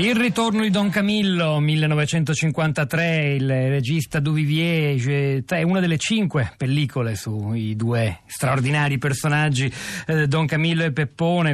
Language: Italian